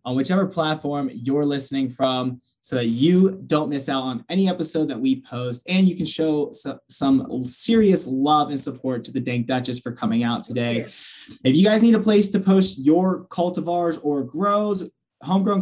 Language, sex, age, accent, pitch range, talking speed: English, male, 20-39, American, 135-185 Hz, 185 wpm